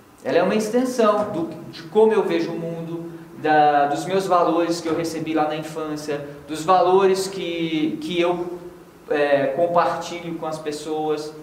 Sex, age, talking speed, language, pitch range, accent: male, 20-39, 165 wpm, Portuguese, 145-215 Hz, Brazilian